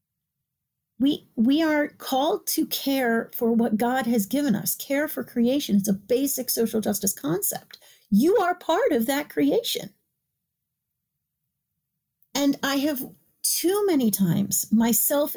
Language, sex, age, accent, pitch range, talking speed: English, female, 40-59, American, 185-250 Hz, 135 wpm